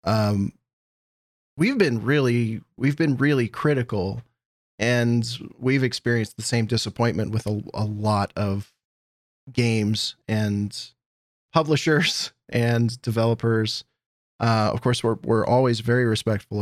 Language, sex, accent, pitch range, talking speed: English, male, American, 110-125 Hz, 115 wpm